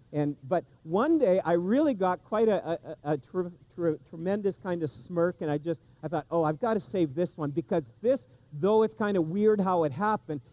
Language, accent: English, American